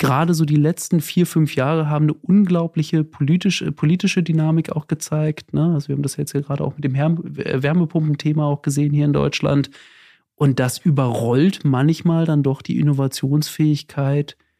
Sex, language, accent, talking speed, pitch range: male, German, German, 155 wpm, 140-160 Hz